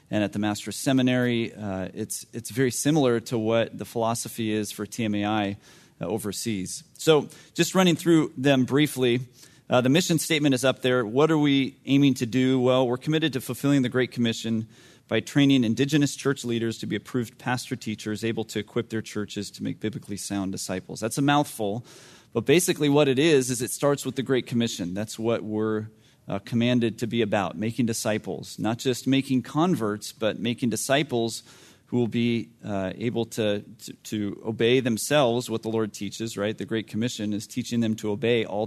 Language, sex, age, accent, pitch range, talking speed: English, male, 30-49, American, 110-135 Hz, 185 wpm